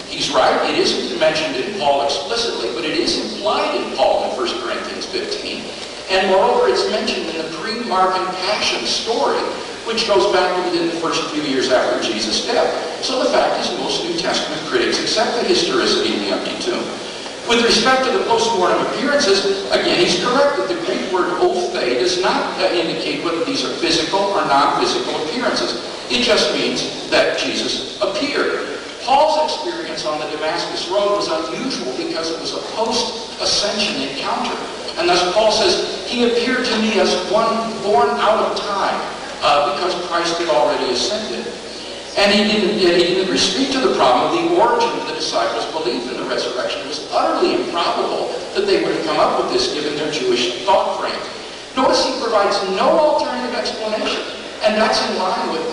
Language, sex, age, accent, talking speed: English, male, 50-69, American, 175 wpm